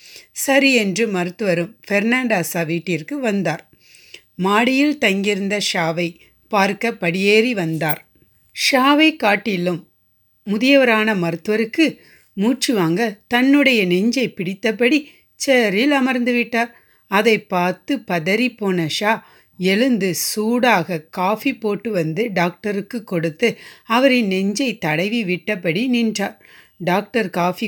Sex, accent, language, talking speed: female, native, Tamil, 90 wpm